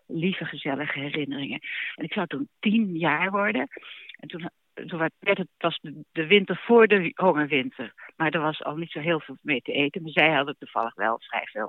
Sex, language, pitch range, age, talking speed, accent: female, Dutch, 150-205 Hz, 60-79, 210 wpm, Dutch